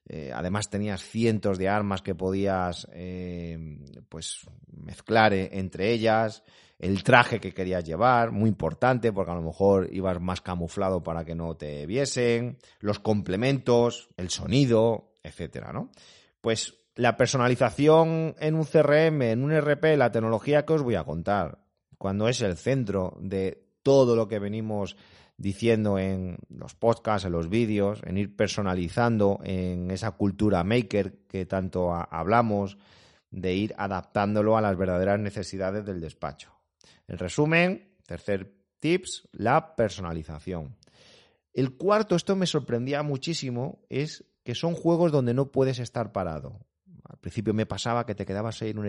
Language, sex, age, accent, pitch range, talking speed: Spanish, male, 30-49, Spanish, 95-120 Hz, 145 wpm